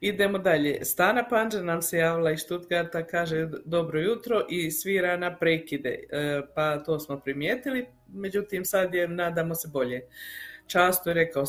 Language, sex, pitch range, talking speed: Croatian, female, 165-200 Hz, 150 wpm